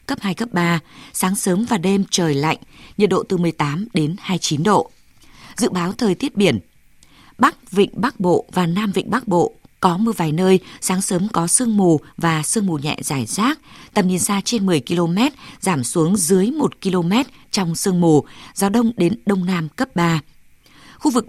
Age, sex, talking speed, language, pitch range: 20-39, female, 195 wpm, Vietnamese, 165-210 Hz